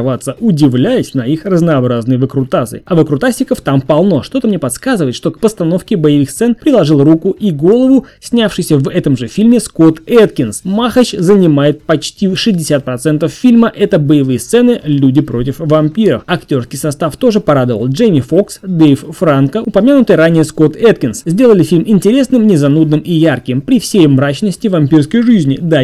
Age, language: 20-39, Russian